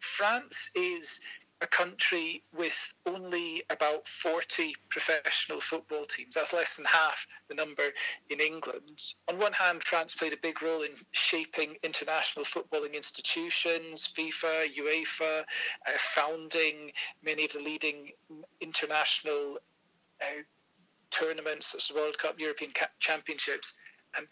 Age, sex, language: 40-59, male, English